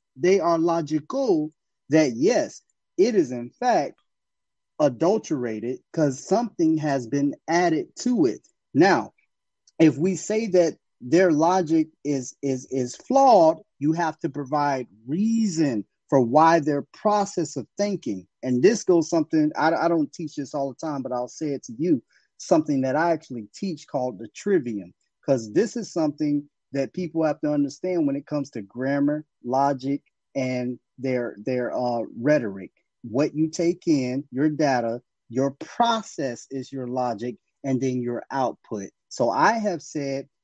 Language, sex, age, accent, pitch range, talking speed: English, male, 30-49, American, 130-175 Hz, 155 wpm